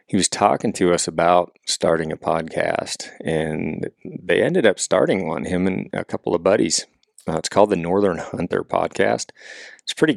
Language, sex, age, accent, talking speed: English, male, 40-59, American, 175 wpm